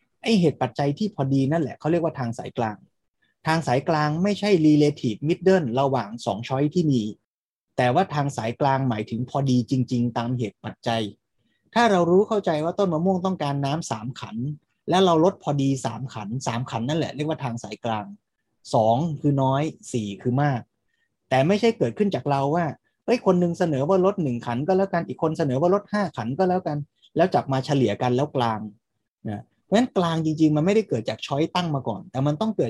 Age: 20-39